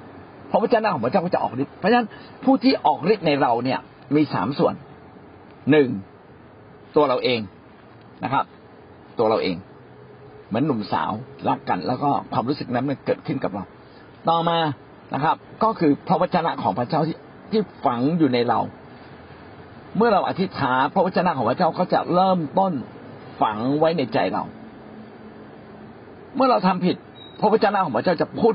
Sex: male